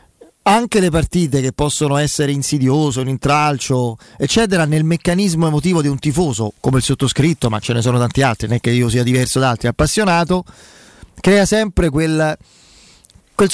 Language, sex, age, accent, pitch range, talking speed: Italian, male, 40-59, native, 140-180 Hz, 170 wpm